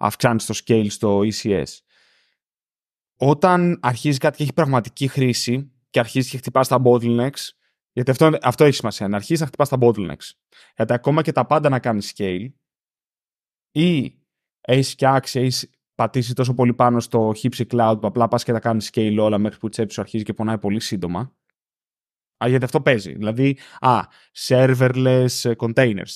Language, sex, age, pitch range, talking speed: Greek, male, 20-39, 115-155 Hz, 165 wpm